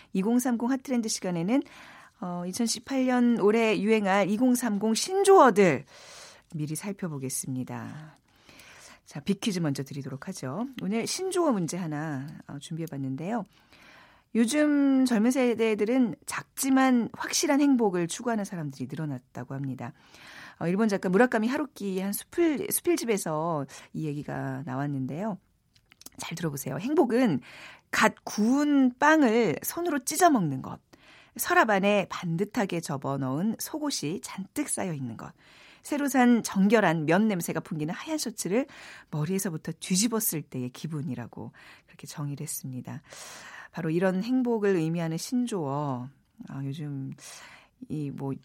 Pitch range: 155-250 Hz